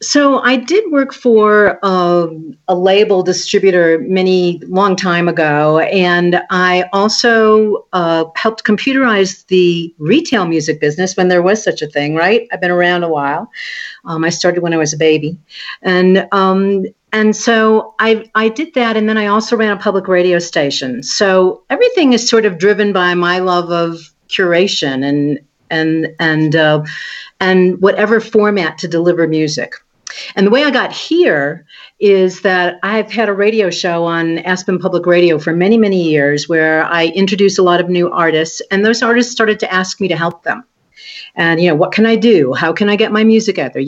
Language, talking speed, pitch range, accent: English, 185 wpm, 170-215 Hz, American